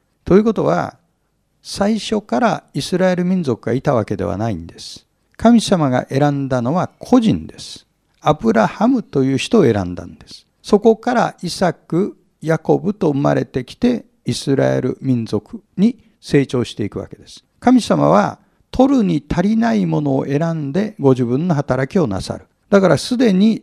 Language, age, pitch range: Japanese, 60-79, 135-215 Hz